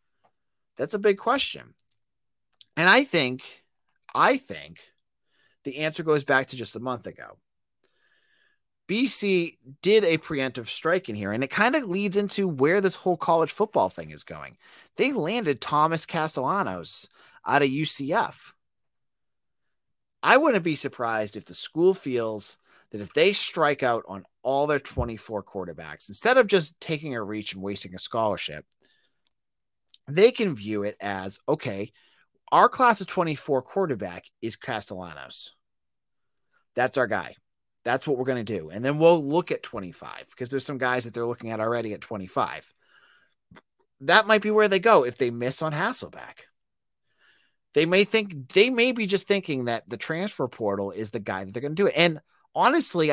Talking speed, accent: 165 wpm, American